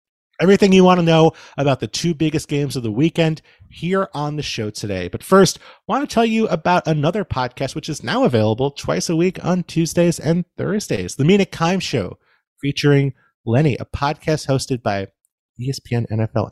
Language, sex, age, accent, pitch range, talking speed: English, male, 30-49, American, 110-170 Hz, 185 wpm